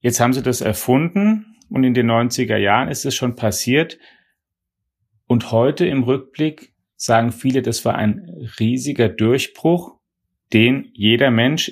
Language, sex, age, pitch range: German, male, 40-59, 115-130 Hz